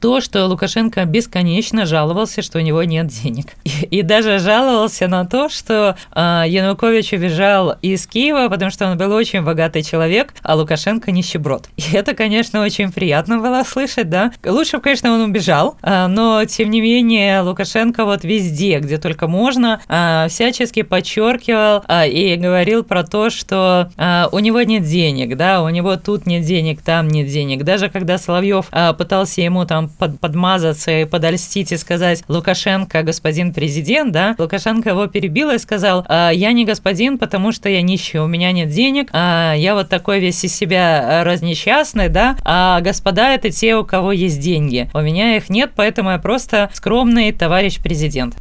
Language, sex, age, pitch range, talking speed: Russian, female, 20-39, 170-220 Hz, 170 wpm